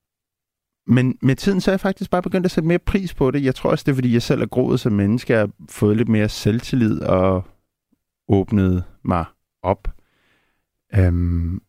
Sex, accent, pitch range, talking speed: male, native, 95-120 Hz, 200 wpm